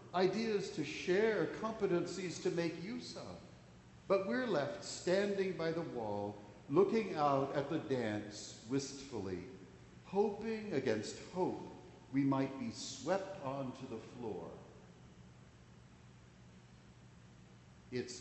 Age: 60-79